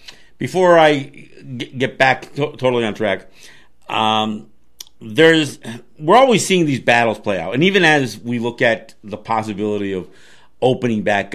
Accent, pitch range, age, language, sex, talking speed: American, 110-150 Hz, 50-69, English, male, 145 wpm